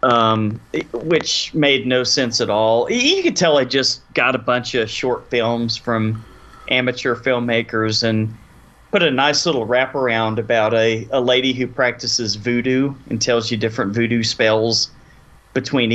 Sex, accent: male, American